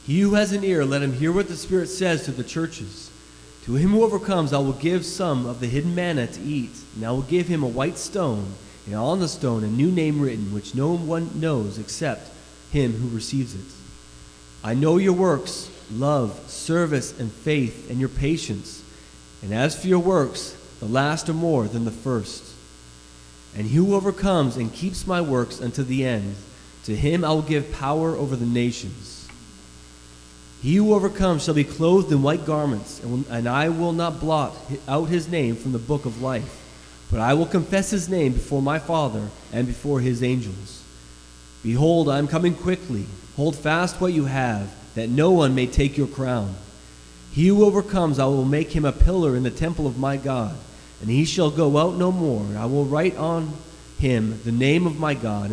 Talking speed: 195 wpm